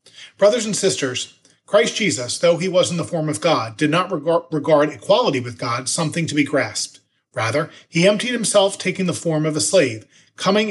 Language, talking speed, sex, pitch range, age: English, 190 wpm, male, 130-180 Hz, 40-59